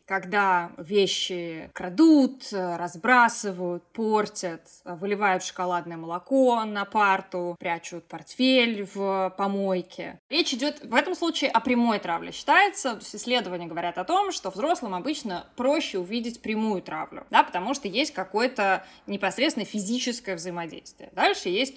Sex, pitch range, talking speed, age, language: female, 185-240 Hz, 120 wpm, 20-39, Russian